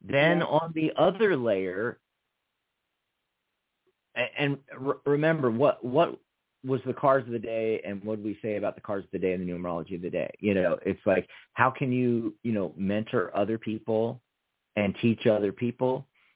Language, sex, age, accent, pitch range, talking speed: English, male, 40-59, American, 110-145 Hz, 180 wpm